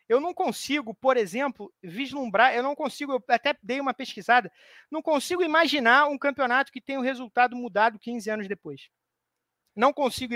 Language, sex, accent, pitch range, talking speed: Portuguese, male, Brazilian, 225-295 Hz, 170 wpm